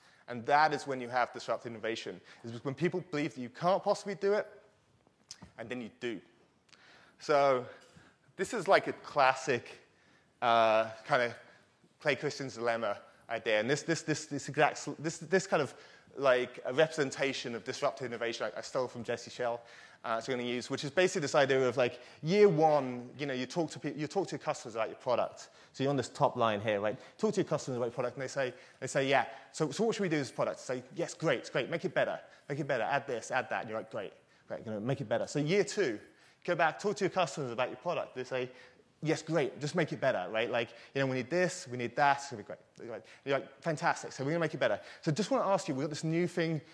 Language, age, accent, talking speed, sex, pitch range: English, 20-39, British, 250 wpm, male, 120-160 Hz